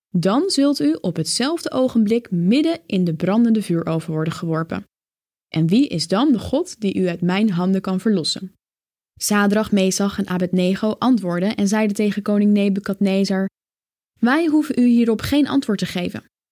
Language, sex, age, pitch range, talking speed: Dutch, female, 10-29, 185-245 Hz, 160 wpm